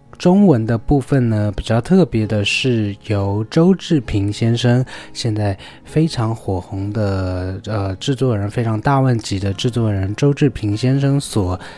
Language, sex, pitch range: Chinese, male, 100-130 Hz